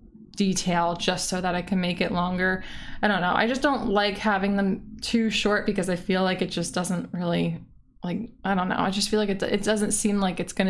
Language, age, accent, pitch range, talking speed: English, 20-39, American, 180-210 Hz, 240 wpm